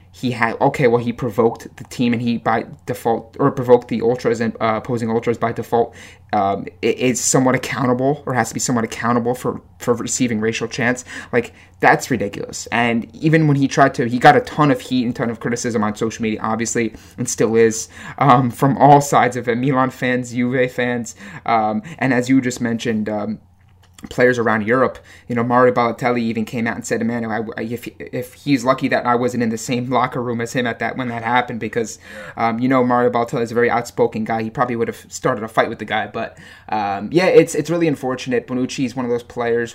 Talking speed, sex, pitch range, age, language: 220 wpm, male, 115-130 Hz, 20-39, English